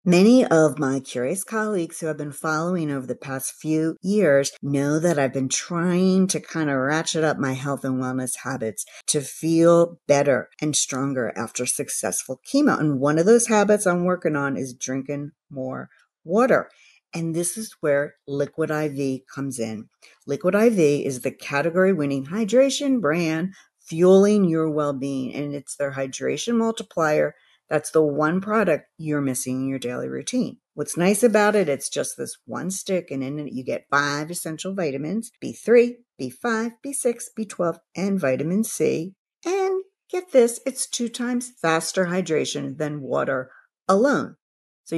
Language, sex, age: English, female, 50-69